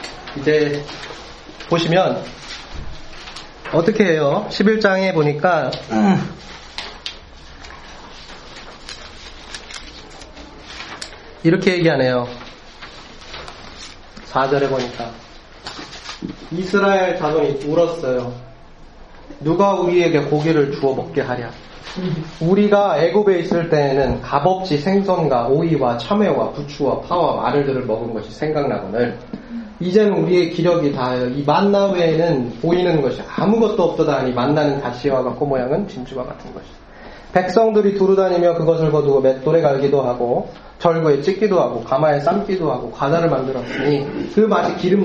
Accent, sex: native, male